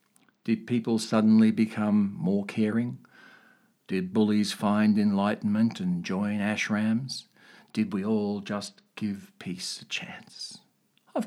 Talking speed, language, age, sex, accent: 115 wpm, English, 50-69, male, Australian